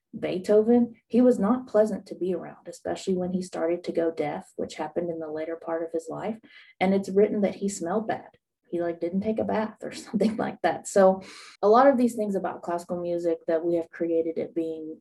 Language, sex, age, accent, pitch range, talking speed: English, female, 30-49, American, 170-215 Hz, 225 wpm